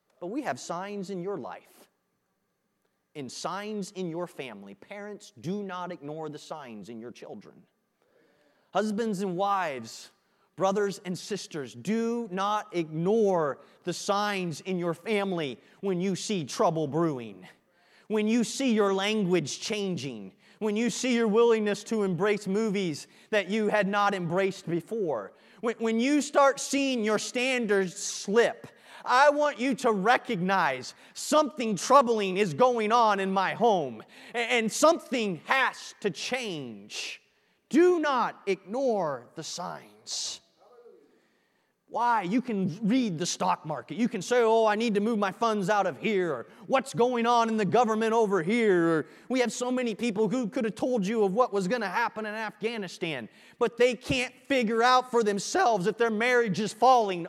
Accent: American